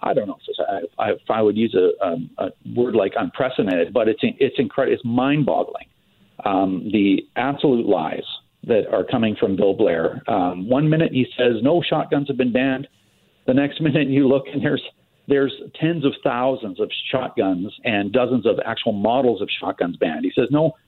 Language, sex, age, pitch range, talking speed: English, male, 50-69, 120-160 Hz, 185 wpm